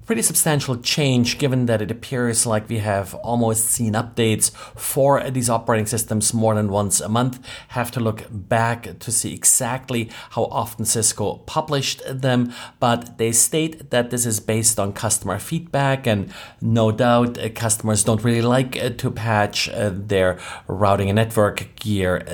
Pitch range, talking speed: 105-130 Hz, 155 wpm